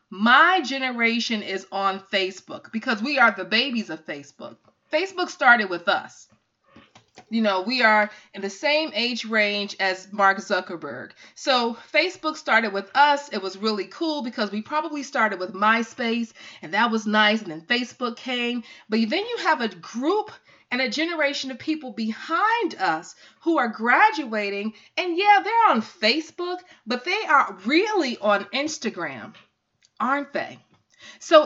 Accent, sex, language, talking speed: American, female, English, 155 wpm